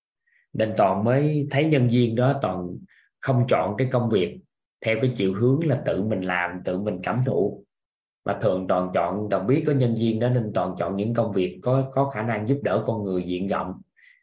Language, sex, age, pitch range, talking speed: Vietnamese, male, 20-39, 100-135 Hz, 215 wpm